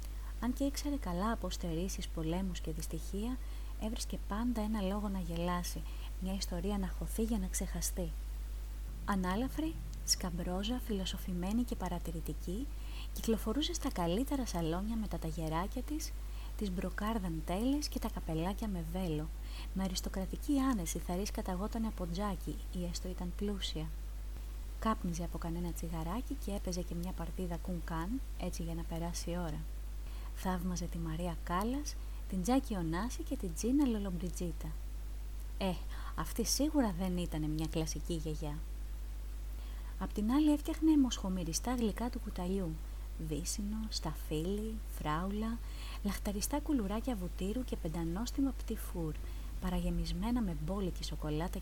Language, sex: Greek, female